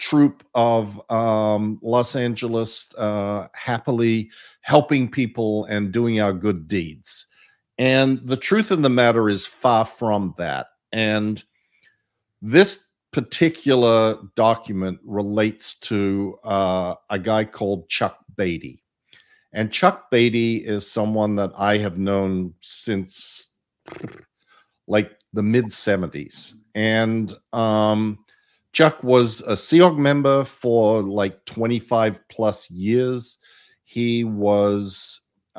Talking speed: 110 wpm